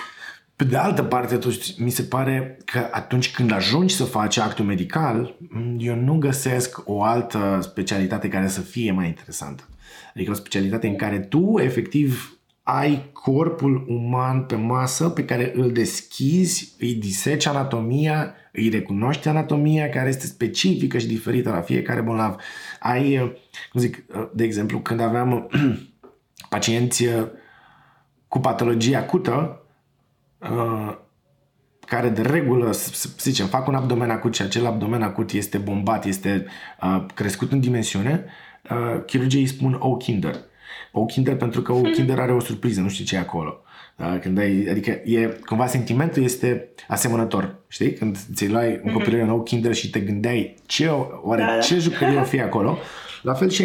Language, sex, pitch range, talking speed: Romanian, male, 110-135 Hz, 150 wpm